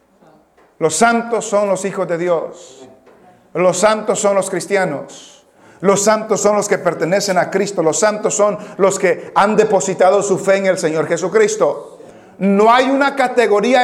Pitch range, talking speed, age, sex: 195-245 Hz, 160 wpm, 40-59, male